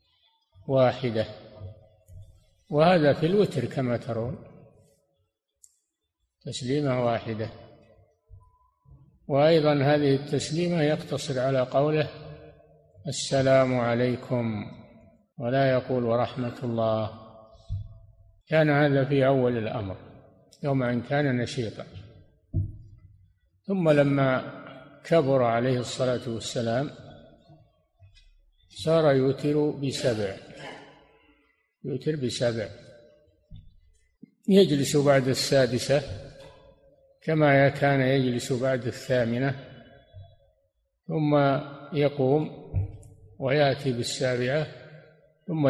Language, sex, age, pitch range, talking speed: Arabic, male, 50-69, 115-145 Hz, 70 wpm